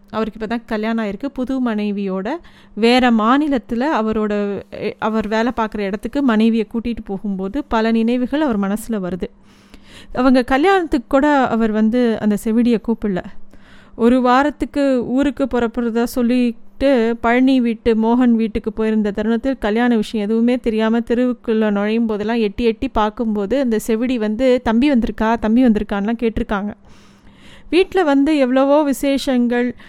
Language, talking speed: Tamil, 125 wpm